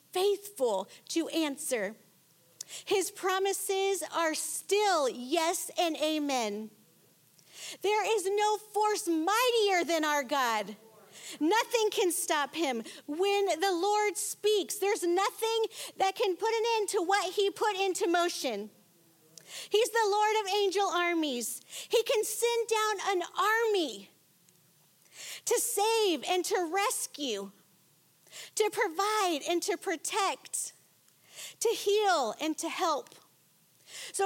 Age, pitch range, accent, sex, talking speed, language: 50-69, 280-400 Hz, American, female, 115 wpm, English